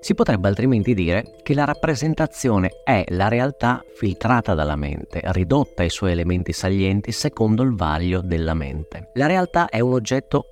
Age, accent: 30-49, native